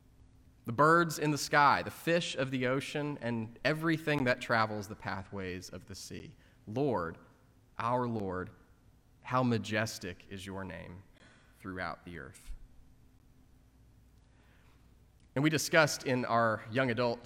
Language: English